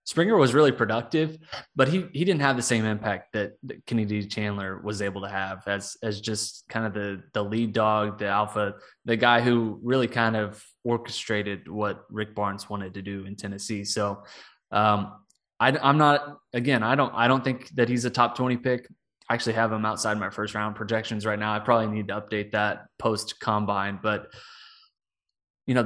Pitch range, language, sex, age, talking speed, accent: 105-120 Hz, English, male, 20-39, 195 wpm, American